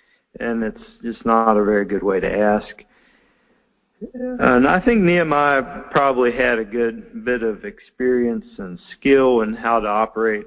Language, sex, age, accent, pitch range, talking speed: English, male, 50-69, American, 110-150 Hz, 155 wpm